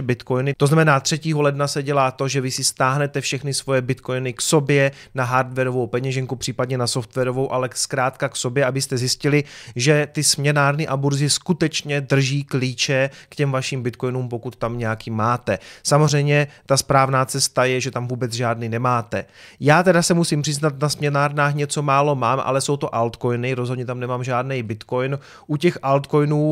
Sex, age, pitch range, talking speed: male, 30-49, 130-155 Hz, 175 wpm